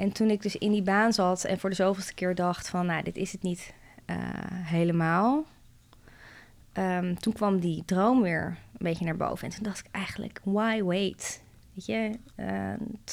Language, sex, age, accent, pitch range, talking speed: Dutch, female, 20-39, Dutch, 165-200 Hz, 190 wpm